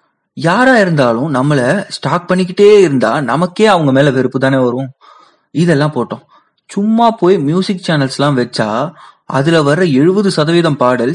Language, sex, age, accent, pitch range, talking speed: Tamil, male, 20-39, native, 130-180 Hz, 100 wpm